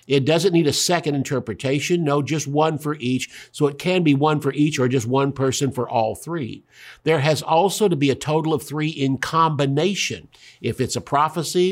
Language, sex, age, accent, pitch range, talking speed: English, male, 50-69, American, 130-170 Hz, 205 wpm